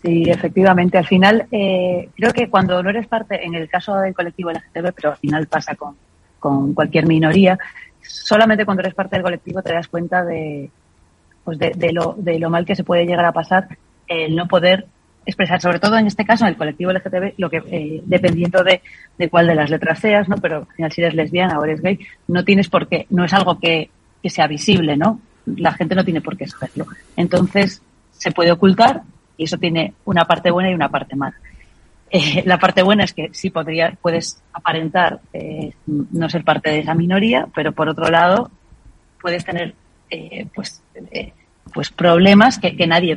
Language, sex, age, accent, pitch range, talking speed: Spanish, female, 30-49, Spanish, 160-185 Hz, 205 wpm